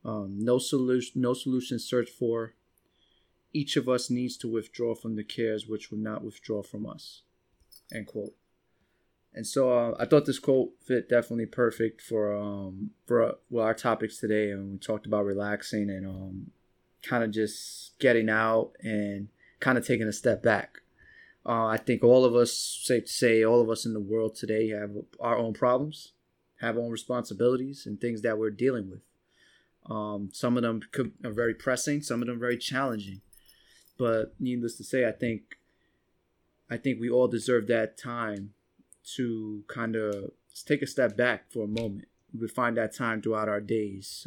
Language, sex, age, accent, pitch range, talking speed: English, male, 20-39, American, 105-120 Hz, 180 wpm